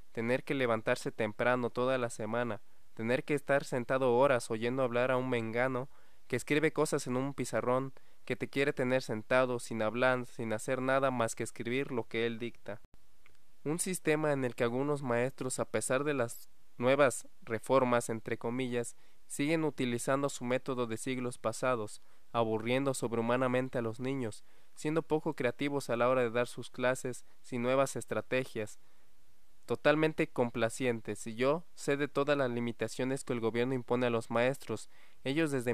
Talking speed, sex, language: 165 wpm, male, Spanish